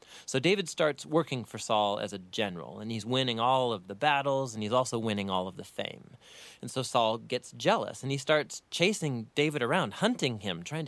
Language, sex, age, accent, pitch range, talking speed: English, male, 30-49, American, 110-160 Hz, 210 wpm